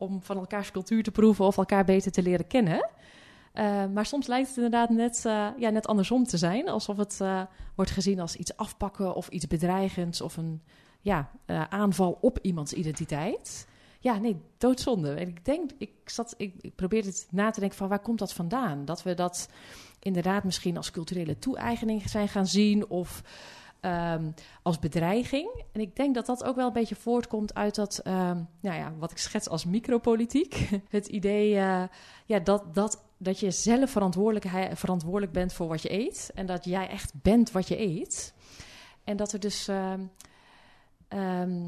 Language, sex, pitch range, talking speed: Dutch, female, 175-215 Hz, 185 wpm